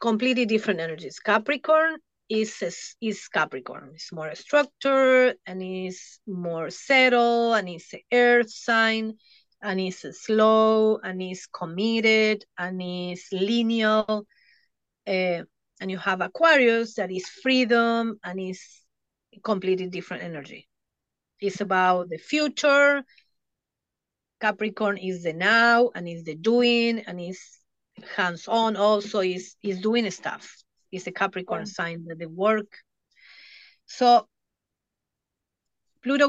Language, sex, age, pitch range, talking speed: English, female, 30-49, 185-235 Hz, 115 wpm